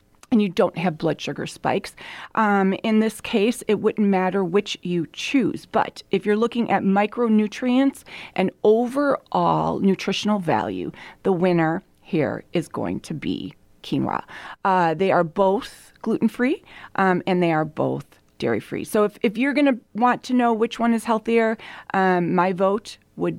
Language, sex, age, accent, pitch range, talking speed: English, female, 30-49, American, 185-240 Hz, 160 wpm